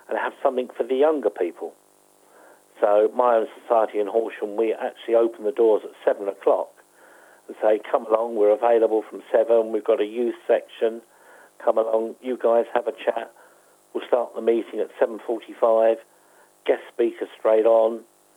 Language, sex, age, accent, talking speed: English, male, 50-69, British, 165 wpm